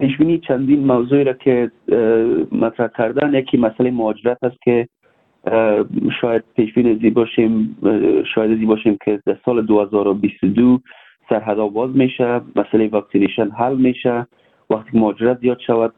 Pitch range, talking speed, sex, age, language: 110-135 Hz, 130 wpm, male, 40-59, Persian